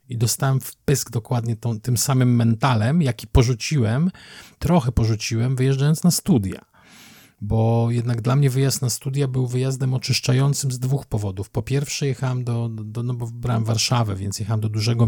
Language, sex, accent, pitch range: Polish, male, native, 105-125 Hz